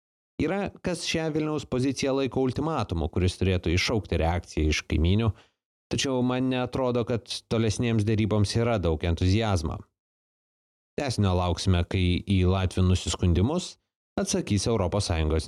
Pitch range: 95-125 Hz